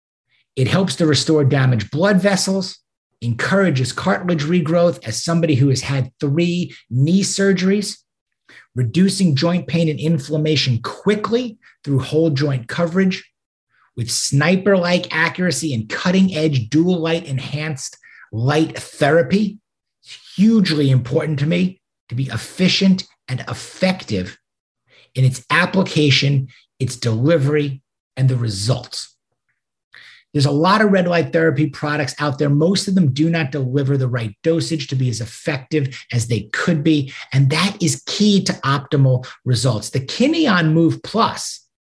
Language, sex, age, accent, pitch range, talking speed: English, male, 50-69, American, 130-175 Hz, 135 wpm